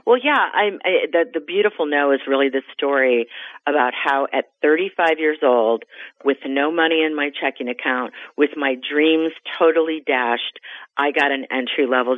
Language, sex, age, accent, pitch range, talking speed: English, female, 40-59, American, 135-160 Hz, 160 wpm